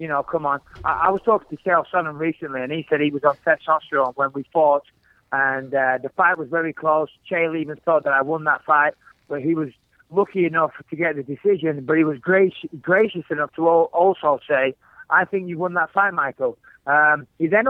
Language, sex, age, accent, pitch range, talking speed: English, male, 30-49, British, 150-180 Hz, 225 wpm